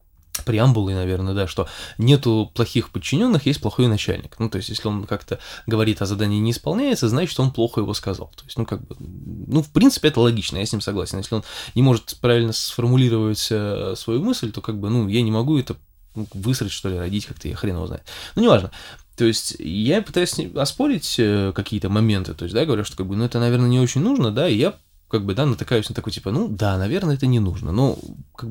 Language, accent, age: Russian, native, 20-39